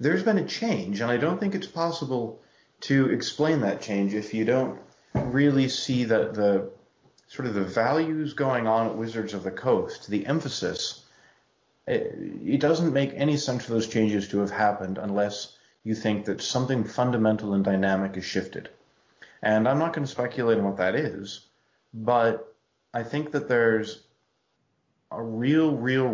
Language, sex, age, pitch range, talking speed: English, male, 30-49, 105-135 Hz, 170 wpm